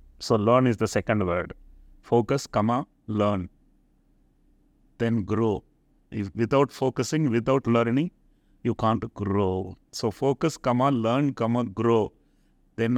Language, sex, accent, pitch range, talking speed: English, male, Indian, 100-120 Hz, 120 wpm